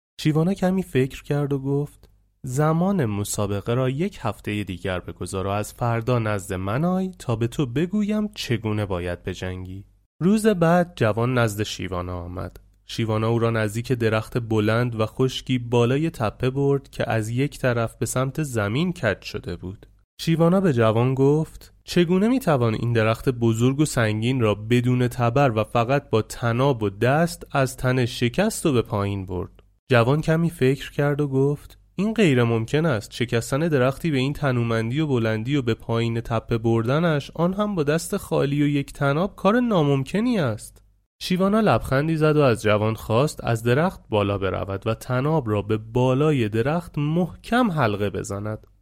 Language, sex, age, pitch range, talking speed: Persian, male, 30-49, 105-150 Hz, 165 wpm